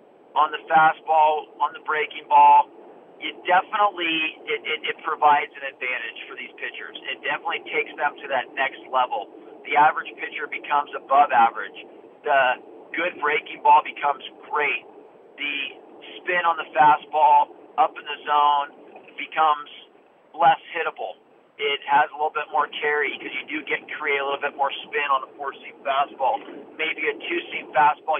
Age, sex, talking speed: 40-59, male, 165 wpm